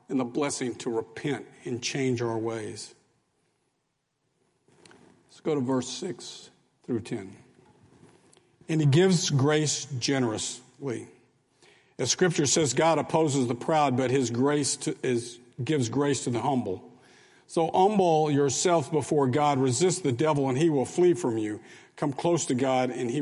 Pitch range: 115-145 Hz